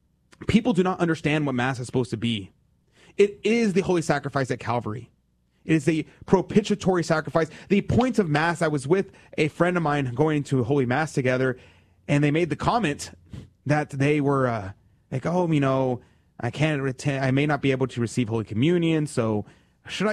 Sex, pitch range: male, 125-185 Hz